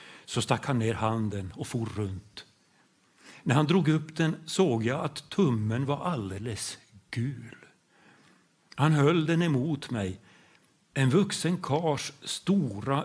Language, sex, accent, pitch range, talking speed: English, male, Swedish, 110-150 Hz, 135 wpm